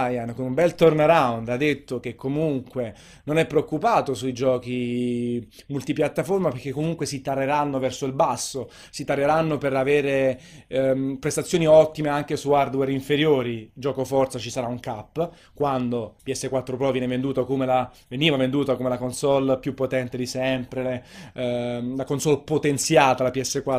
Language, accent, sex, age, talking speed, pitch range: Italian, native, male, 30-49, 150 wpm, 130-155 Hz